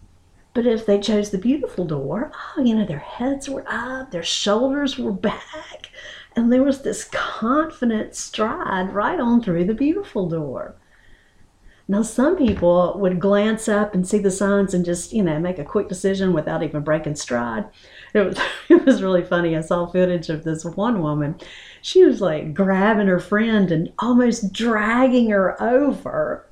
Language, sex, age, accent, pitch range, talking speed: English, female, 50-69, American, 175-255 Hz, 170 wpm